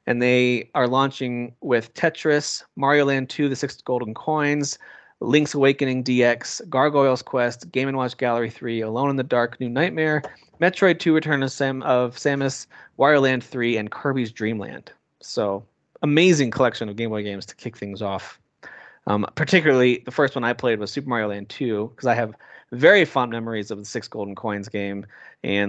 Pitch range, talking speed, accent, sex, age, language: 110-140 Hz, 180 wpm, American, male, 30-49, English